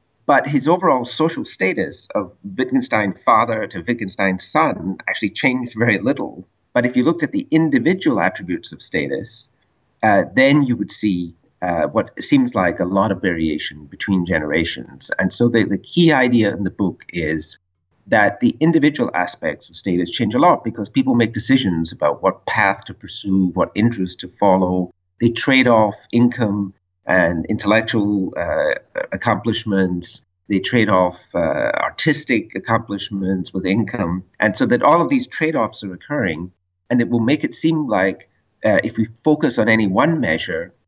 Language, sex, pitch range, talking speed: English, male, 95-120 Hz, 160 wpm